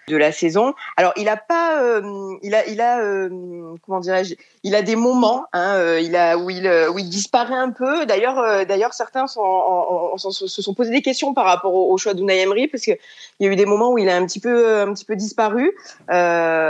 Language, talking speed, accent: French, 250 wpm, French